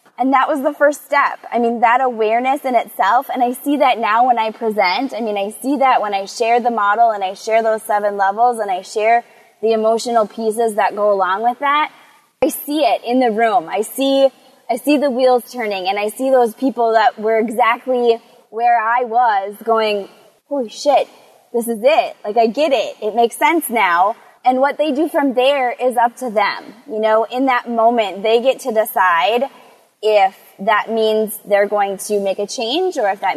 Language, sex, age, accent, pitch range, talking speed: English, female, 20-39, American, 210-260 Hz, 210 wpm